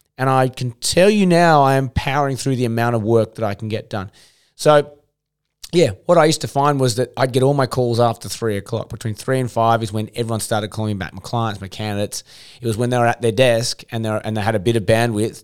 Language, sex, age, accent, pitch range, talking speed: English, male, 20-39, Australian, 115-135 Hz, 265 wpm